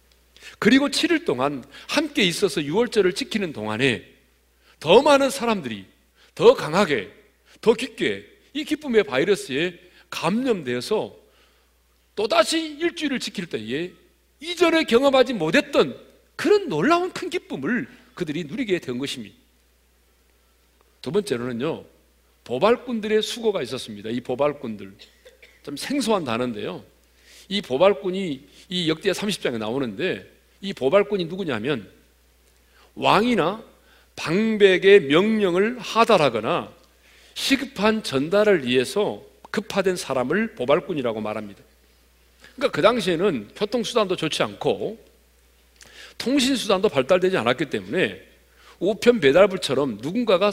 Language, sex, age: Korean, male, 40-59